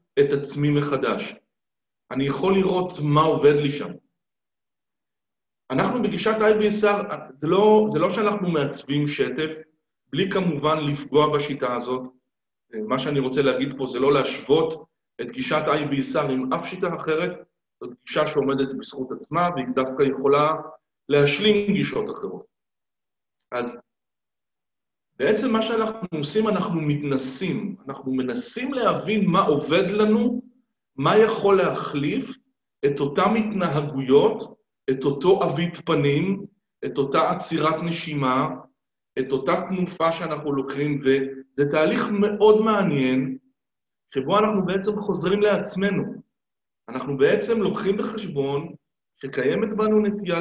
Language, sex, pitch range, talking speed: Hebrew, male, 140-210 Hz, 115 wpm